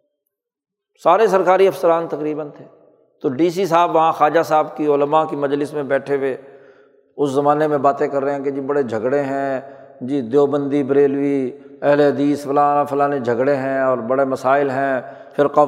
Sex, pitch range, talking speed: male, 135-165 Hz, 170 wpm